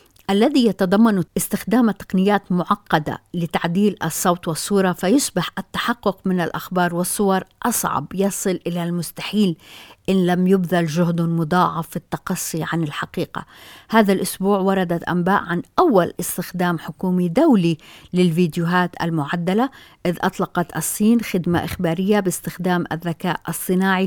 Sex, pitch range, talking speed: female, 170-195 Hz, 110 wpm